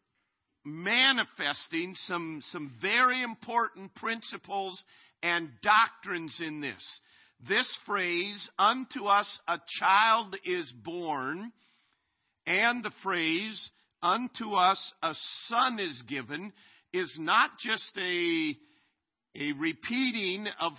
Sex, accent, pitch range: male, American, 165-220 Hz